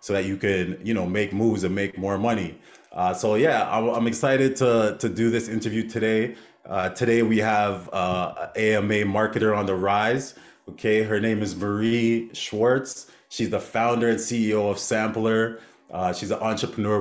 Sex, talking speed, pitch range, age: male, 175 wpm, 100-115 Hz, 30-49